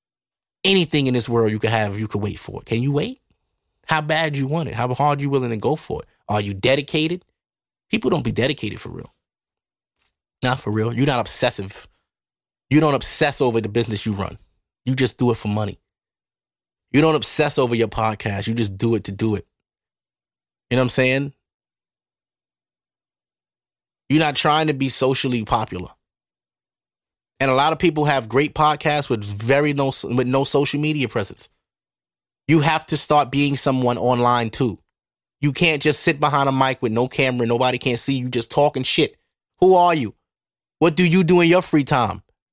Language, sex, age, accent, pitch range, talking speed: English, male, 30-49, American, 115-160 Hz, 190 wpm